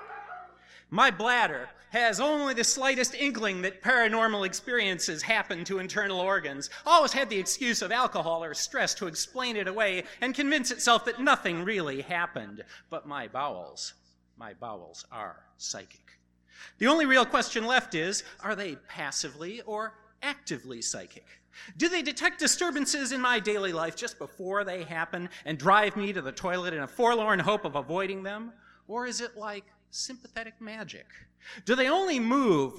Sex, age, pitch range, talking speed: male, 40-59, 180-255 Hz, 160 wpm